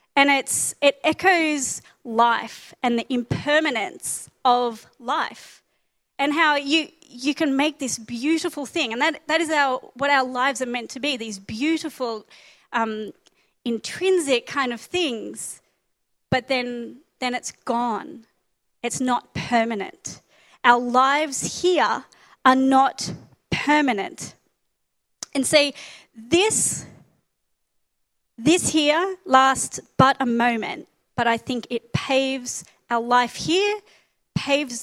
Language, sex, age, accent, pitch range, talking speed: English, female, 30-49, Australian, 245-315 Hz, 120 wpm